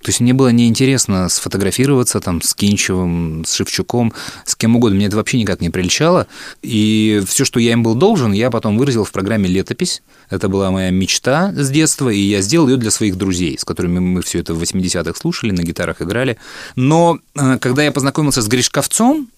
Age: 30-49